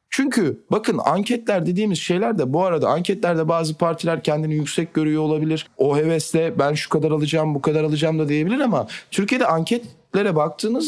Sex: male